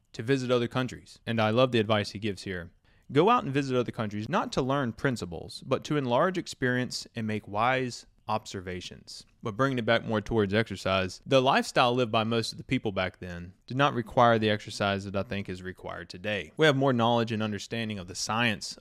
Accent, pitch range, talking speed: American, 100-130 Hz, 215 wpm